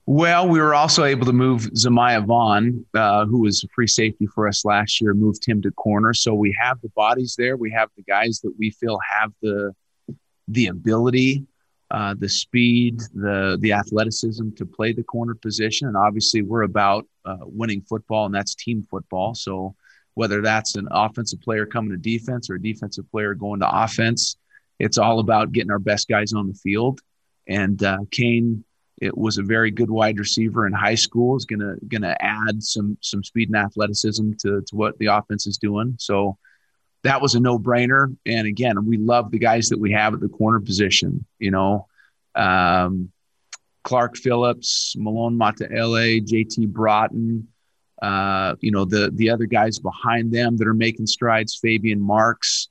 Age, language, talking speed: 30-49, English, 180 wpm